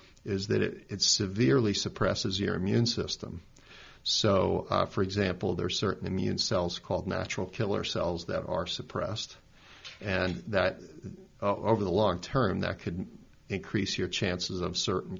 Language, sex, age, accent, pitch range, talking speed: English, male, 50-69, American, 95-120 Hz, 155 wpm